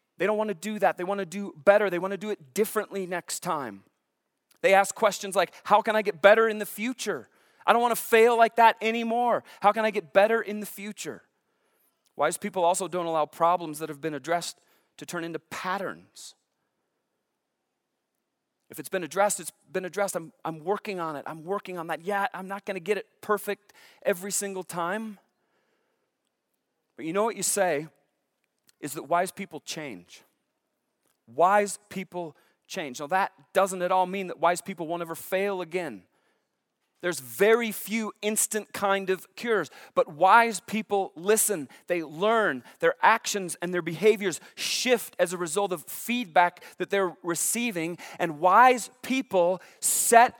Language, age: English, 40-59